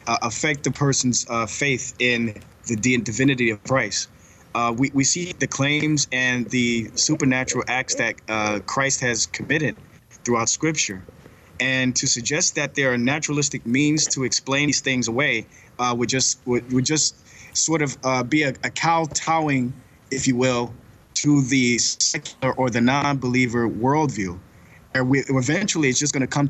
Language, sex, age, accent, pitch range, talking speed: English, male, 20-39, American, 120-145 Hz, 165 wpm